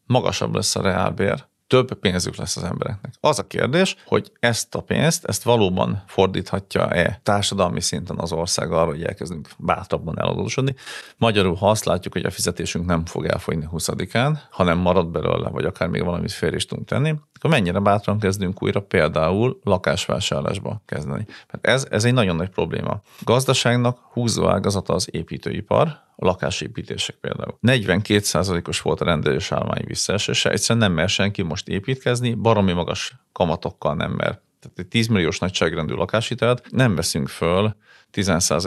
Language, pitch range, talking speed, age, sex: Hungarian, 95-120 Hz, 155 wpm, 40-59, male